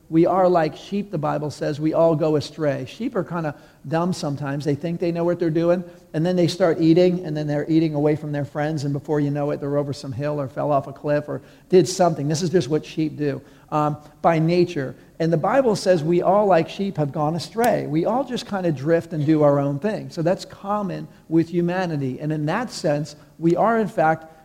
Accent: American